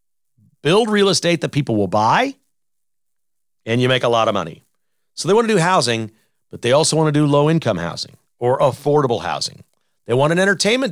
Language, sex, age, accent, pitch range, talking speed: English, male, 50-69, American, 115-165 Hz, 190 wpm